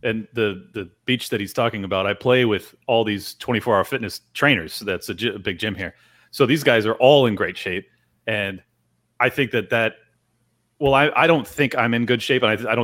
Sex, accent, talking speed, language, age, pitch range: male, American, 240 wpm, English, 30-49, 115-140 Hz